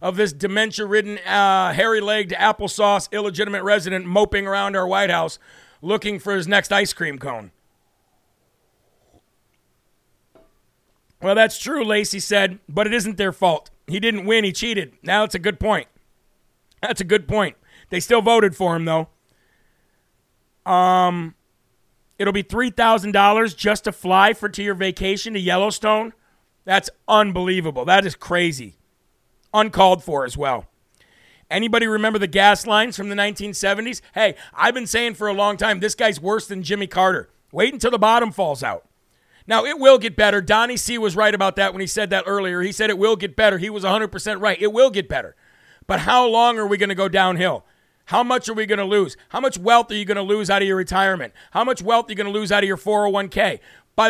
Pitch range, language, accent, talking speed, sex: 190-215 Hz, English, American, 190 wpm, male